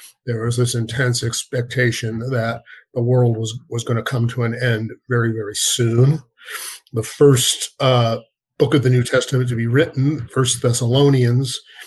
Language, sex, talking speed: English, male, 160 wpm